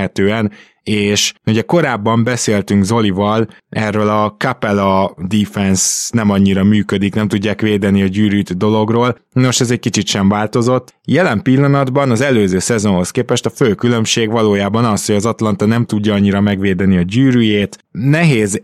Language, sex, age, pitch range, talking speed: Hungarian, male, 20-39, 100-120 Hz, 150 wpm